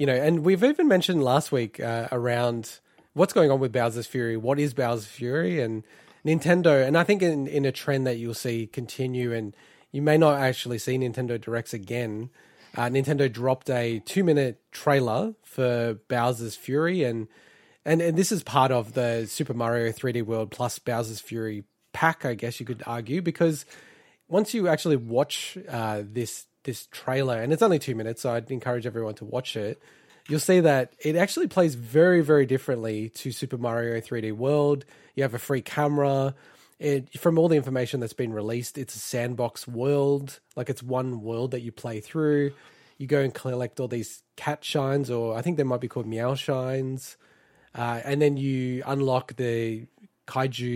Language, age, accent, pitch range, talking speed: English, 20-39, Australian, 115-145 Hz, 185 wpm